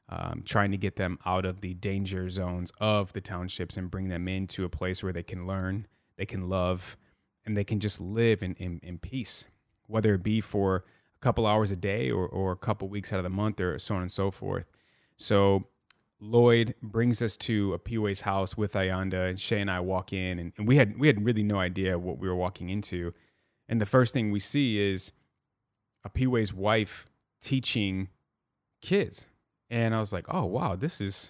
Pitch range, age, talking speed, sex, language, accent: 95-115 Hz, 30-49, 210 wpm, male, English, American